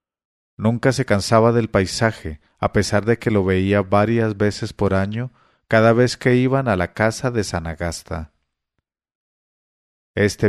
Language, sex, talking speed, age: English, male, 150 wpm, 40-59